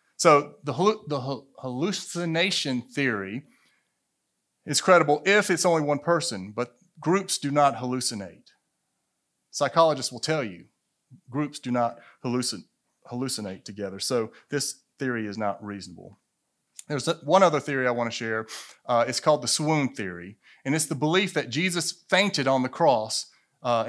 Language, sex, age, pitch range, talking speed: English, male, 30-49, 115-150 Hz, 140 wpm